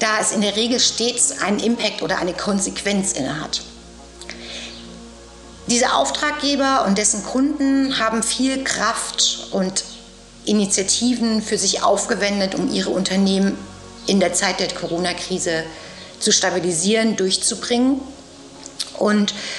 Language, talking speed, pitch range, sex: German, 115 wpm, 190-250 Hz, female